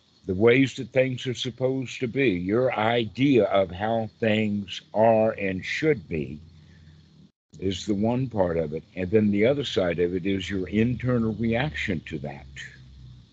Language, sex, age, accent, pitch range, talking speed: English, male, 60-79, American, 95-120 Hz, 160 wpm